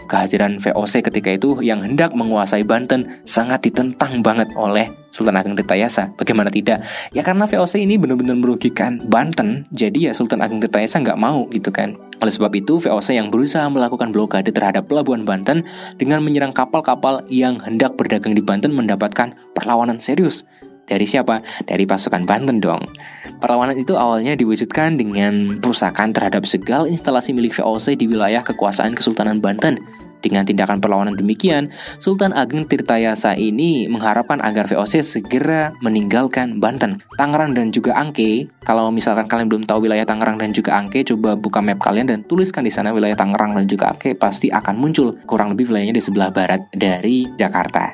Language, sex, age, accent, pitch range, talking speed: Indonesian, male, 20-39, native, 105-135 Hz, 160 wpm